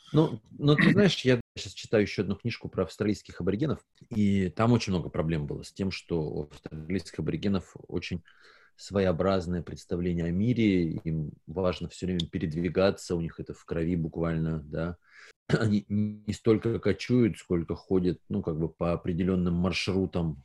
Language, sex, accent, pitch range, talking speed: Russian, male, native, 80-105 Hz, 160 wpm